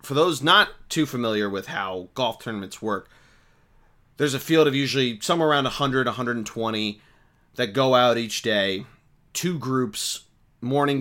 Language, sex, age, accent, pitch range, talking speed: English, male, 30-49, American, 105-135 Hz, 145 wpm